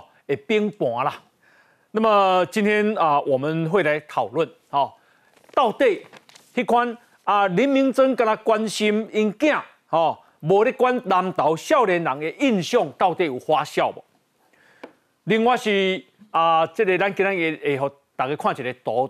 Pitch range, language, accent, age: 175-250 Hz, Chinese, native, 40-59